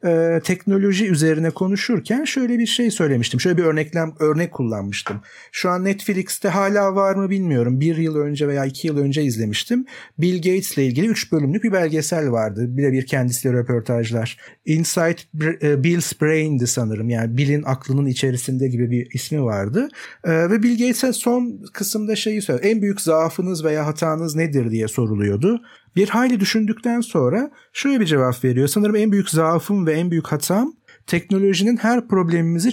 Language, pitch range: Turkish, 145-210 Hz